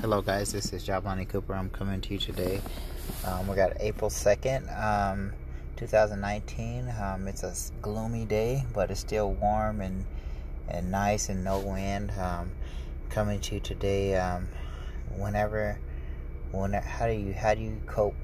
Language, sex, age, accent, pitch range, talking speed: English, male, 30-49, American, 65-100 Hz, 160 wpm